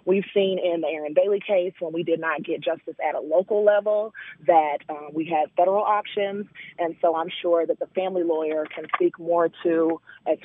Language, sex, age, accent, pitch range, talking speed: English, female, 30-49, American, 165-205 Hz, 205 wpm